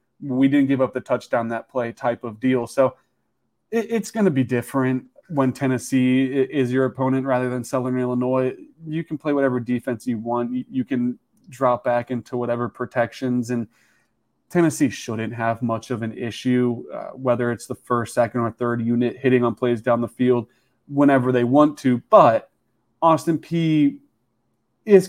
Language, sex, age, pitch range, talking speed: English, male, 20-39, 125-145 Hz, 170 wpm